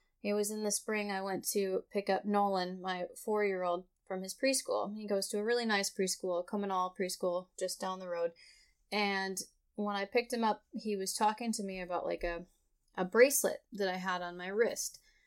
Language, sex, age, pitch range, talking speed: English, female, 20-39, 195-240 Hz, 200 wpm